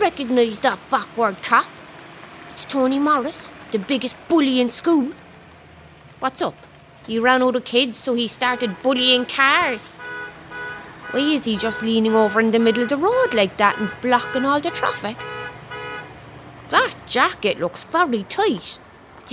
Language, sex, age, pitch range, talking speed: English, female, 30-49, 245-375 Hz, 150 wpm